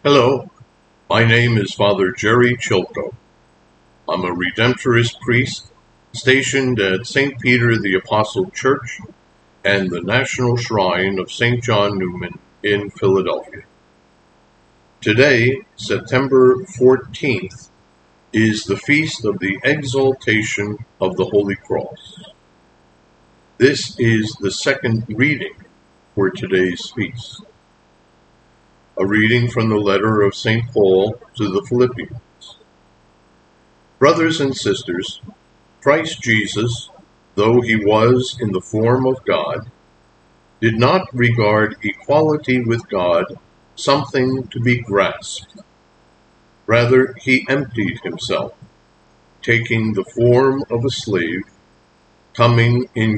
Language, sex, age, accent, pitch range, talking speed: English, male, 50-69, American, 100-125 Hz, 105 wpm